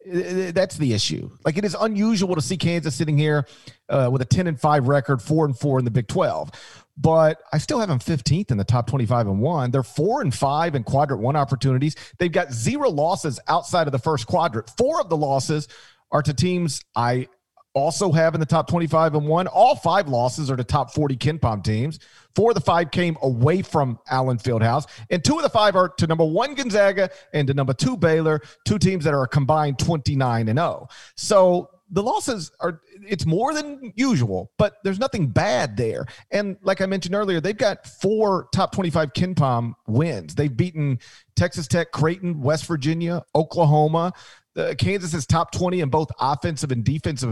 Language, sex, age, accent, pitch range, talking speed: English, male, 40-59, American, 125-175 Hz, 200 wpm